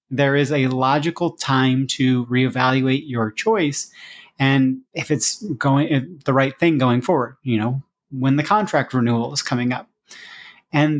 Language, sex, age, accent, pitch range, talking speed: English, male, 30-49, American, 135-165 Hz, 155 wpm